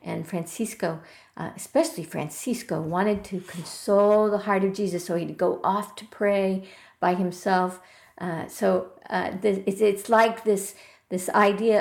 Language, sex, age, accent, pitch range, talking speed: English, female, 50-69, American, 190-245 Hz, 145 wpm